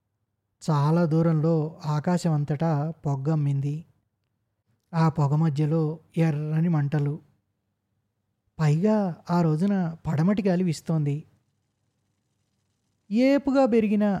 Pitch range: 145-180 Hz